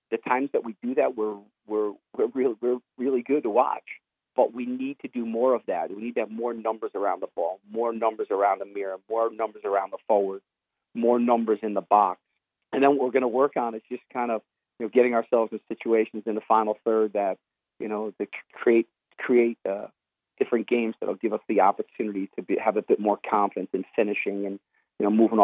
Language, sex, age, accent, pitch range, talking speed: English, male, 40-59, American, 110-125 Hz, 225 wpm